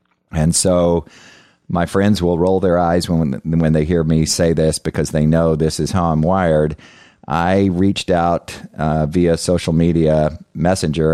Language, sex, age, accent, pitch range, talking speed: English, male, 40-59, American, 75-85 Hz, 165 wpm